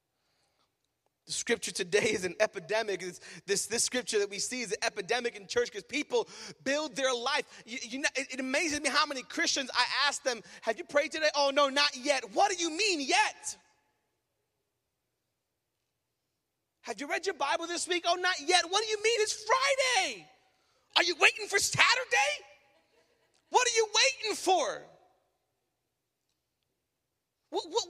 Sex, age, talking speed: male, 30-49, 160 wpm